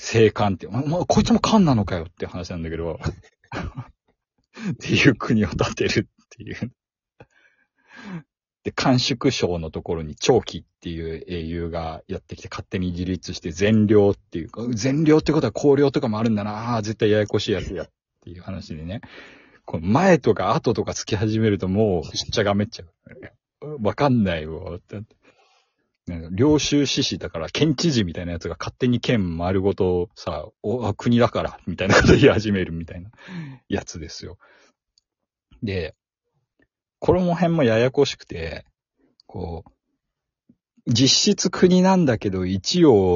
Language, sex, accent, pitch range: Japanese, male, native, 90-130 Hz